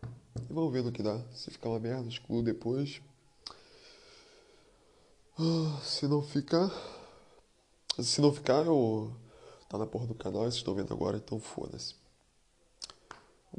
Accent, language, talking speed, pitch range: Brazilian, Portuguese, 135 wpm, 105-130 Hz